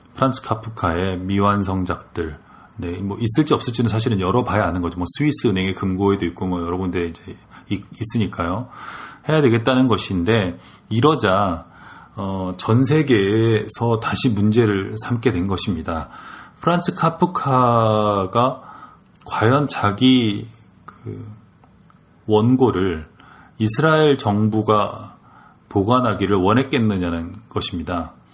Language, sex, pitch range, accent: Korean, male, 95-125 Hz, native